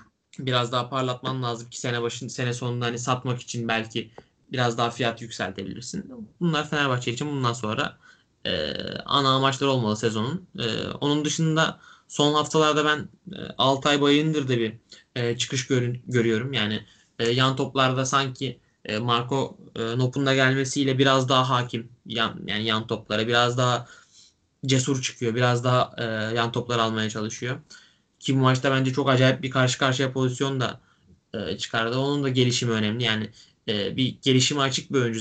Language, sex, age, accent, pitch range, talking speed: Turkish, male, 10-29, native, 120-140 Hz, 165 wpm